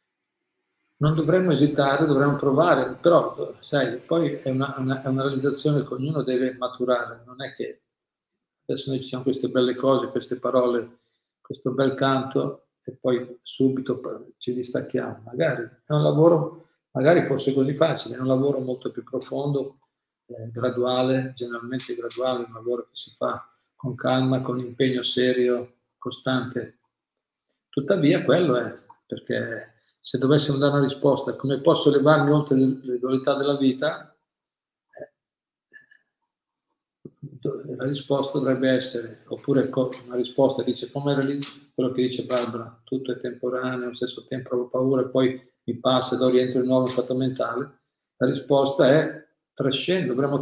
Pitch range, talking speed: 125-140 Hz, 140 wpm